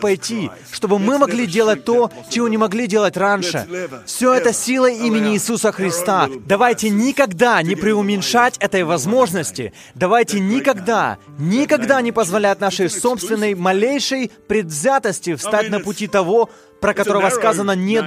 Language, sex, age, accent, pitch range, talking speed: Russian, male, 20-39, native, 195-235 Hz, 135 wpm